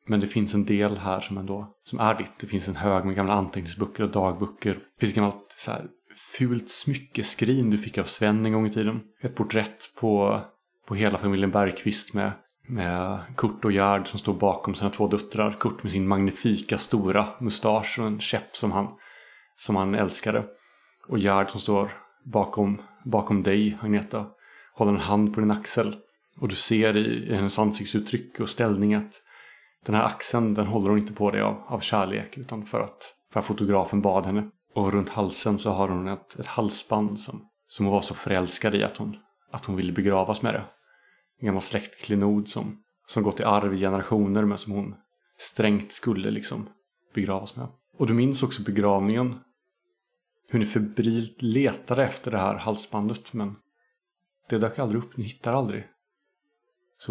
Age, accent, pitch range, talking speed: 30-49, Norwegian, 100-110 Hz, 185 wpm